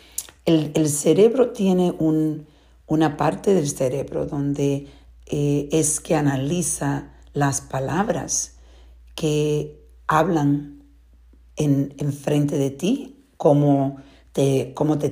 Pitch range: 135-165 Hz